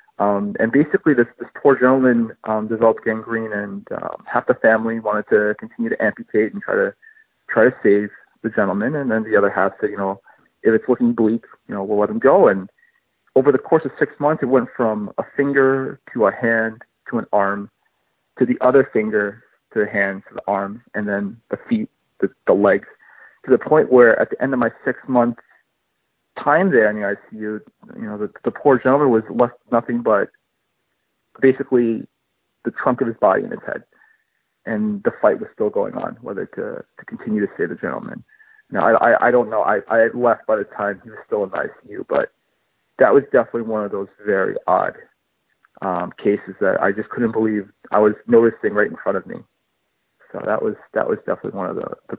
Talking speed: 210 wpm